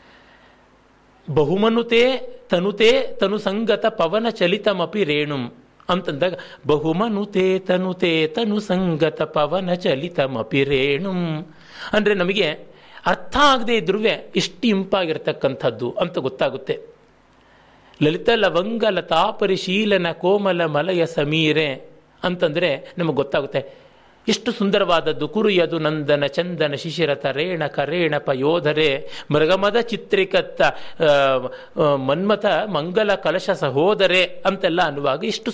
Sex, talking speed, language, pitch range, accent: male, 85 wpm, Kannada, 155-215 Hz, native